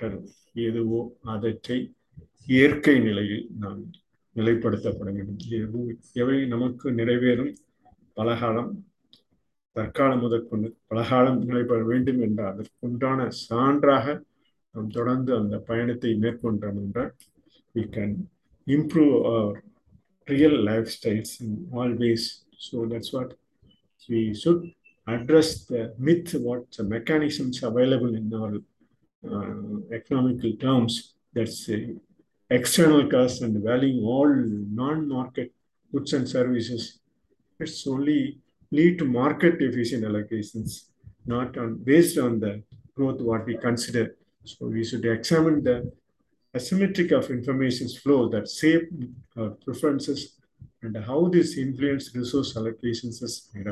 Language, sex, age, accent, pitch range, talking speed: Tamil, male, 50-69, native, 115-135 Hz, 85 wpm